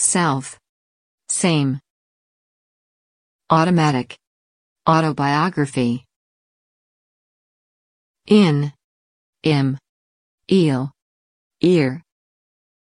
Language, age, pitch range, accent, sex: English, 50-69, 125-170 Hz, American, female